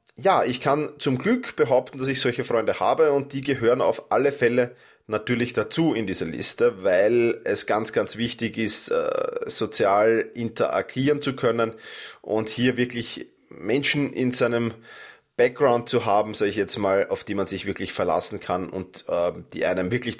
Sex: male